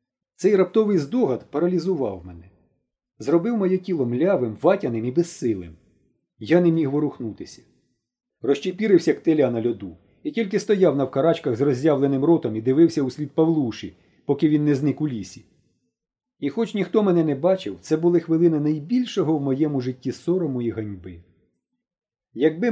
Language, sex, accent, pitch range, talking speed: Ukrainian, male, native, 120-190 Hz, 150 wpm